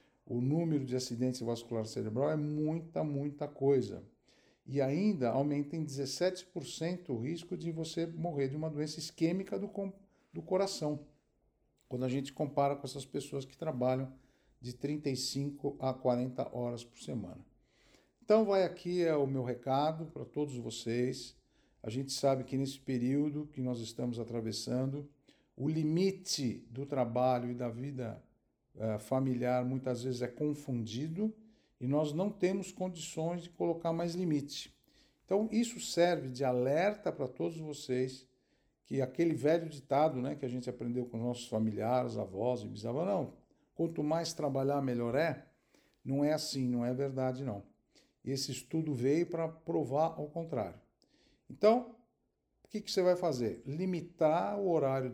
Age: 60-79